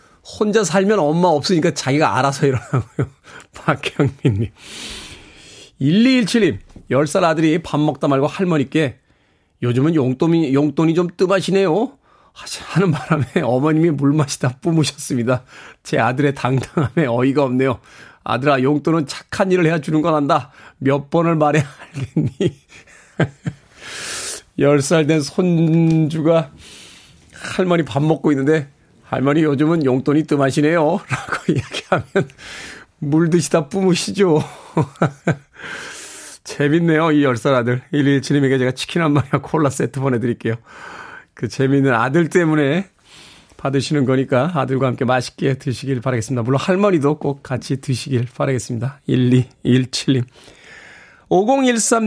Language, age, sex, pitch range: Korean, 40-59, male, 135-165 Hz